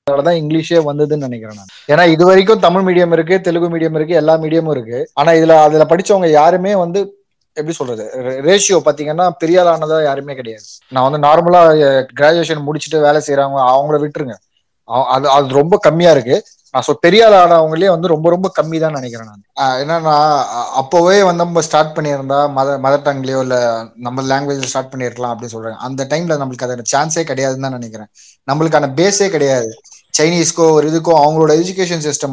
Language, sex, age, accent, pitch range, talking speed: Tamil, male, 20-39, native, 135-165 Hz, 165 wpm